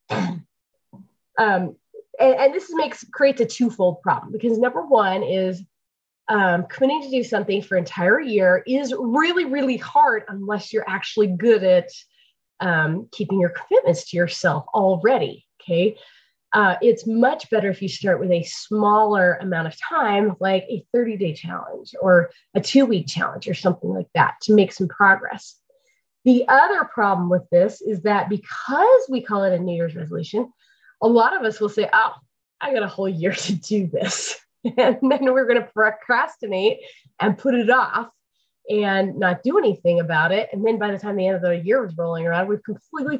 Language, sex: English, female